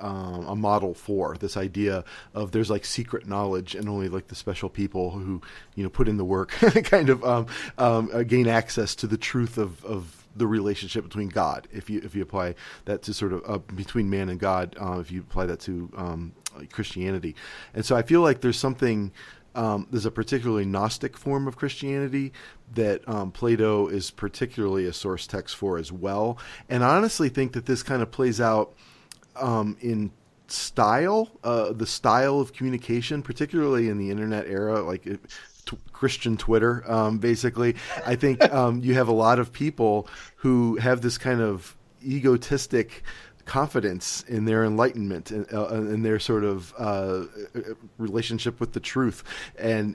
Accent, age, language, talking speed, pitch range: American, 40-59, English, 180 wpm, 100-120 Hz